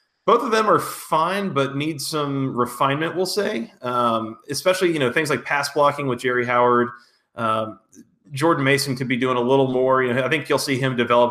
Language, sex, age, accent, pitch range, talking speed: English, male, 30-49, American, 120-155 Hz, 205 wpm